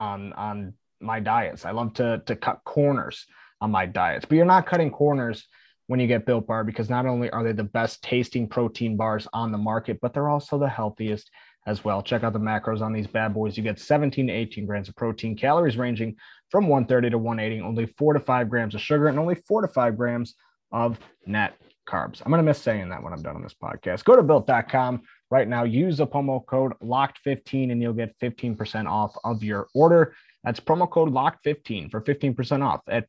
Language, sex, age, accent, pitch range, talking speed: English, male, 20-39, American, 110-140 Hz, 215 wpm